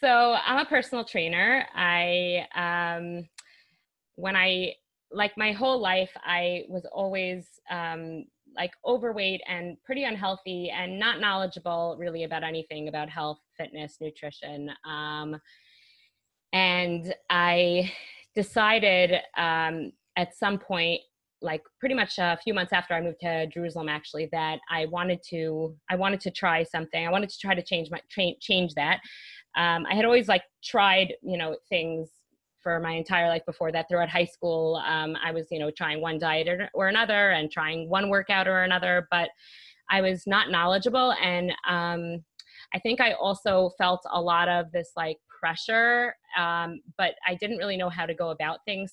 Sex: female